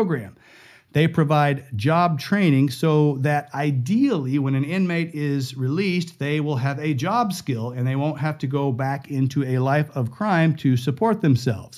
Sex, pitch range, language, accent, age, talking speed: male, 130-170 Hz, English, American, 50-69, 170 wpm